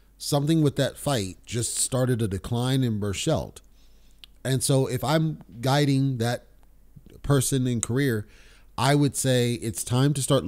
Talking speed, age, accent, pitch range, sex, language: 150 wpm, 30-49, American, 110-140 Hz, male, English